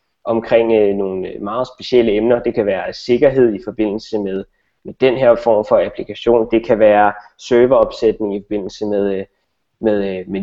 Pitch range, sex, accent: 110-140 Hz, male, native